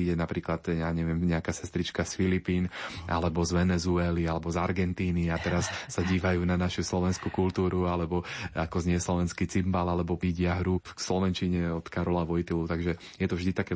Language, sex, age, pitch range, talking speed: Slovak, male, 20-39, 85-95 Hz, 175 wpm